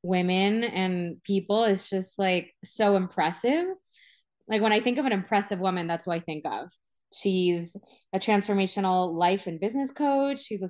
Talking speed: 170 wpm